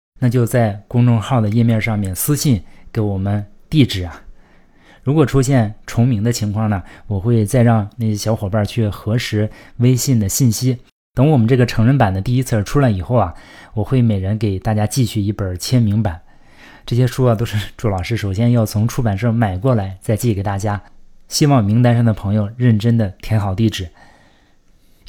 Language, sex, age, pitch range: Chinese, male, 20-39, 100-125 Hz